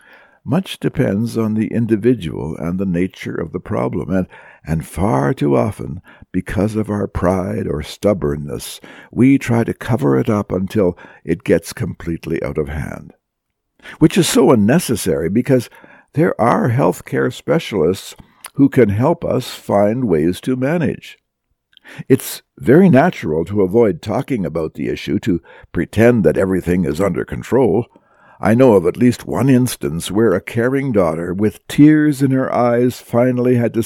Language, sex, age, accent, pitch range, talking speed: English, male, 60-79, American, 90-125 Hz, 155 wpm